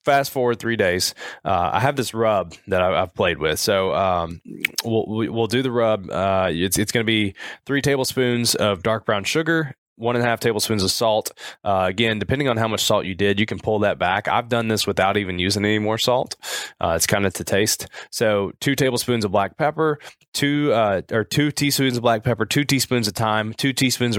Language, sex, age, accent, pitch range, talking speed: English, male, 20-39, American, 100-125 Hz, 215 wpm